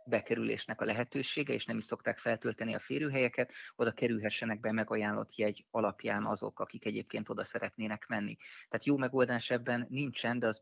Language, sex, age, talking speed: Hungarian, male, 30-49, 165 wpm